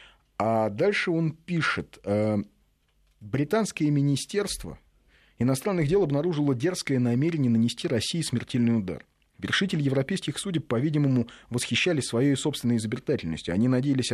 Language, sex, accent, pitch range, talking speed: Russian, male, native, 110-155 Hz, 105 wpm